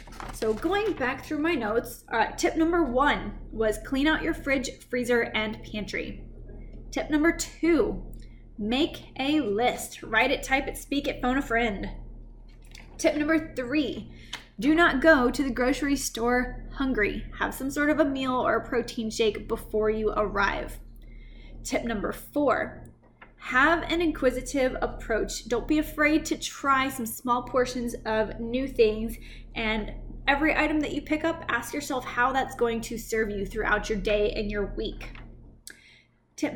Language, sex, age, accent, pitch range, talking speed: English, female, 10-29, American, 230-305 Hz, 160 wpm